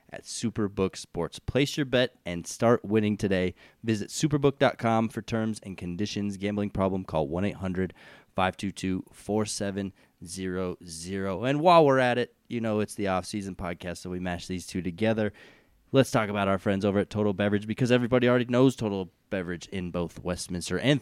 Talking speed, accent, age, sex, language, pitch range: 160 wpm, American, 20-39, male, English, 95-115 Hz